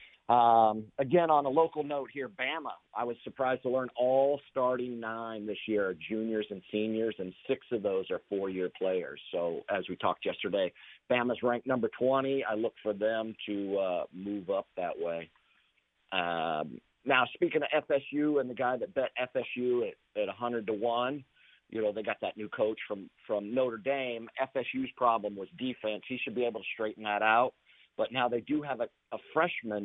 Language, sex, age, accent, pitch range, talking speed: English, male, 50-69, American, 105-130 Hz, 195 wpm